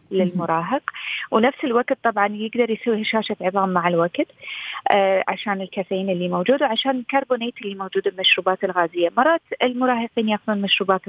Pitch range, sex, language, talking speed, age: 195-250 Hz, female, Arabic, 130 wpm, 30-49